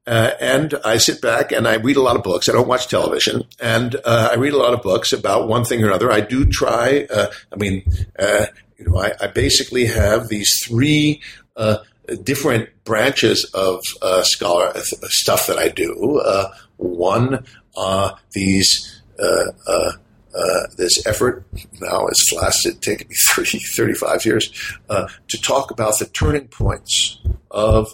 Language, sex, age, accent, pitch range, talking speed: English, male, 60-79, American, 100-125 Hz, 170 wpm